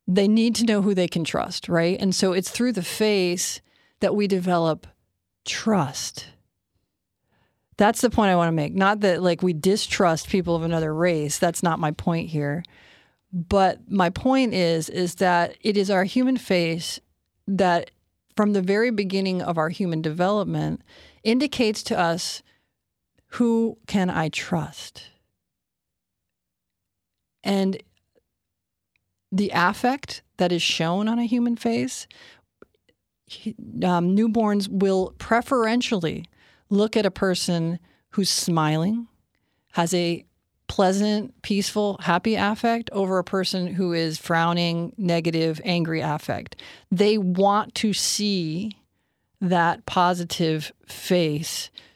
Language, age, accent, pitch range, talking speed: English, 40-59, American, 165-205 Hz, 125 wpm